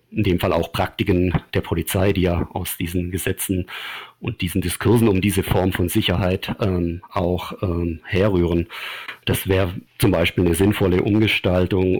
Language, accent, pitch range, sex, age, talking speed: German, German, 90-105 Hz, male, 50-69, 155 wpm